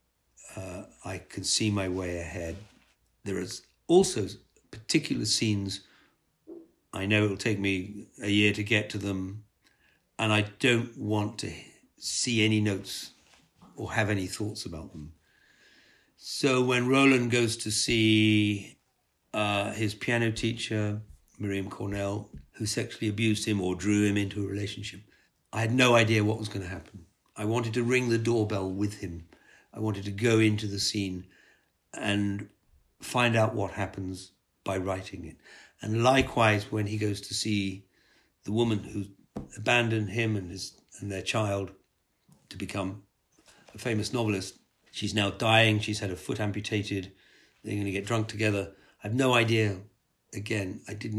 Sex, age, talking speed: male, 60-79, 160 wpm